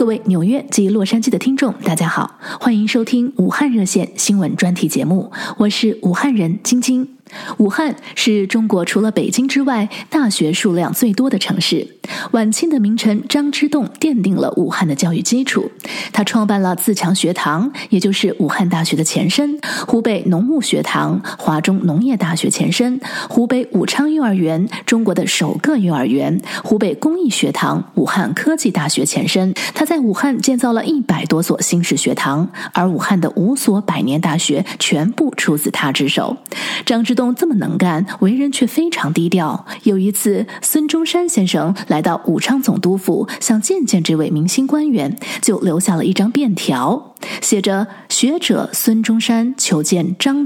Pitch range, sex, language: 185-260 Hz, female, Chinese